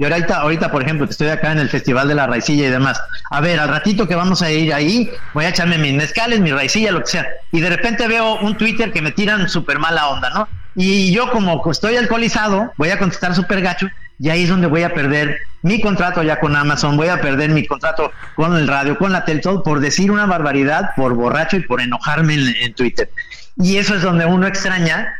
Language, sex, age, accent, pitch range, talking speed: Spanish, male, 50-69, Mexican, 145-185 Hz, 235 wpm